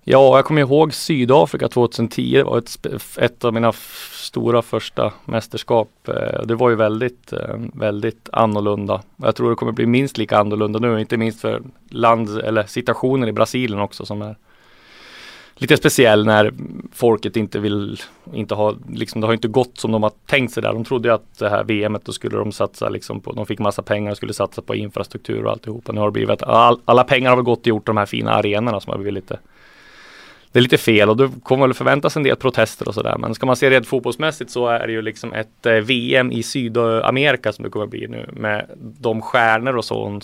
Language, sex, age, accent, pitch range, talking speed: English, male, 30-49, Swedish, 105-125 Hz, 205 wpm